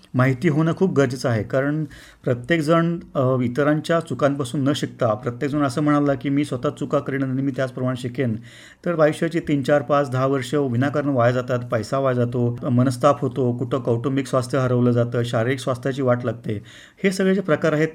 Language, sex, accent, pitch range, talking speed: Marathi, male, native, 125-155 Hz, 165 wpm